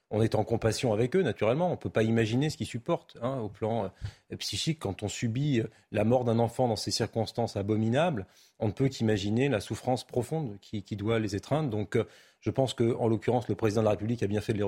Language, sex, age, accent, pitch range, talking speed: French, male, 30-49, French, 105-130 Hz, 235 wpm